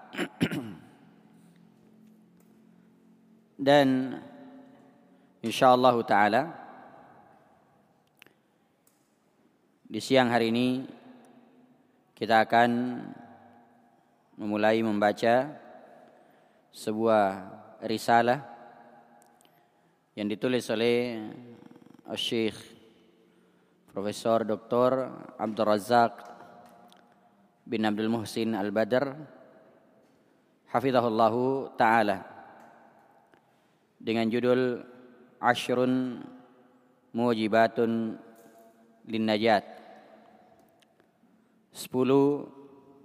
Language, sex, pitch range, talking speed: Indonesian, male, 110-140 Hz, 45 wpm